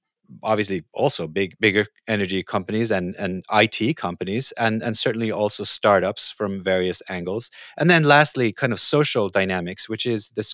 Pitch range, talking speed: 100-125 Hz, 160 wpm